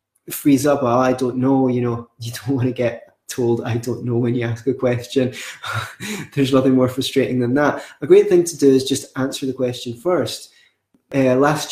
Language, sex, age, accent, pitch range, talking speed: English, male, 20-39, British, 125-140 Hz, 205 wpm